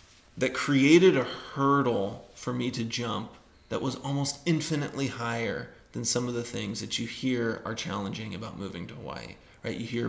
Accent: American